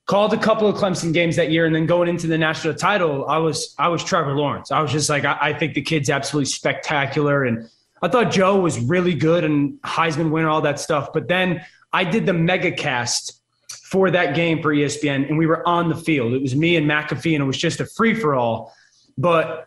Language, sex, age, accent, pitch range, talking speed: English, male, 20-39, American, 150-185 Hz, 230 wpm